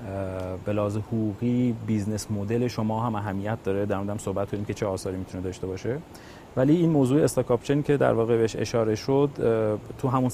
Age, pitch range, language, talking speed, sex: 30-49, 105-130 Hz, Persian, 175 wpm, male